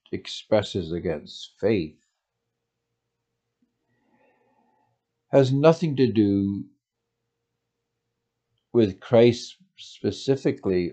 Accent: American